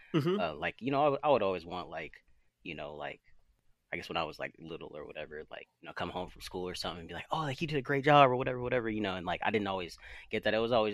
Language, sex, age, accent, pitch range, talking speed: English, male, 20-39, American, 90-125 Hz, 305 wpm